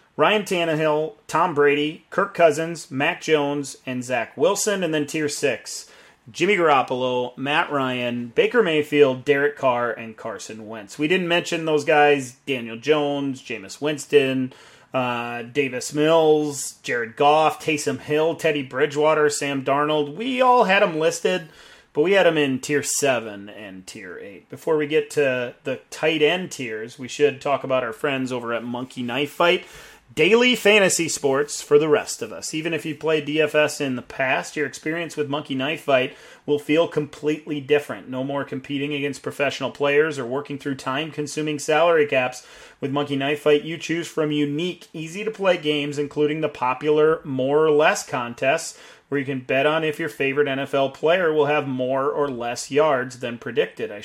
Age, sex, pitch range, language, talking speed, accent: 30-49, male, 130-155 Hz, English, 170 wpm, American